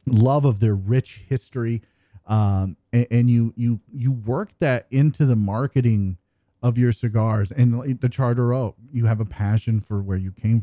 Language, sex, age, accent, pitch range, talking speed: English, male, 40-59, American, 100-130 Hz, 170 wpm